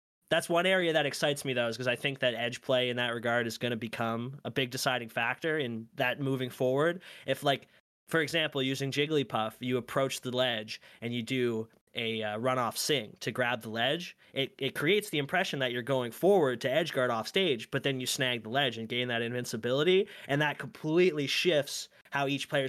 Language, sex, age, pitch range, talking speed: English, male, 20-39, 120-150 Hz, 215 wpm